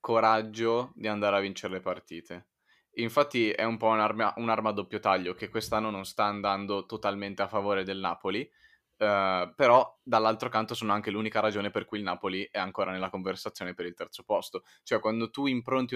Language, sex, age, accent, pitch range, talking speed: Italian, male, 20-39, native, 100-115 Hz, 185 wpm